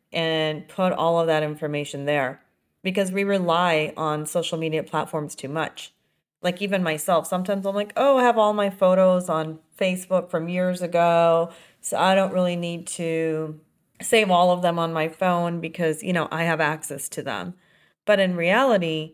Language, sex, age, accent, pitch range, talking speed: English, female, 30-49, American, 160-185 Hz, 180 wpm